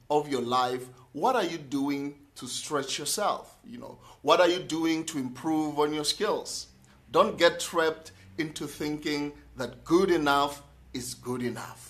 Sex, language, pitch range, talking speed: male, English, 130-185 Hz, 160 wpm